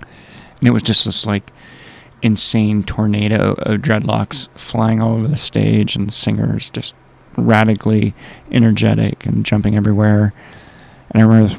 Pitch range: 105-115 Hz